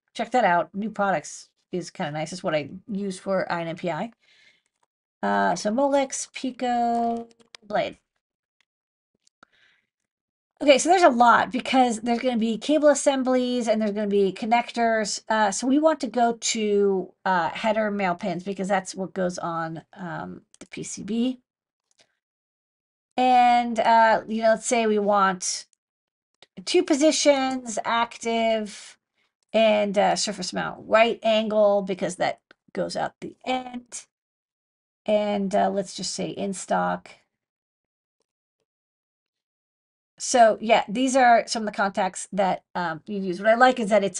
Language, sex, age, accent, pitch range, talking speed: English, female, 40-59, American, 195-245 Hz, 145 wpm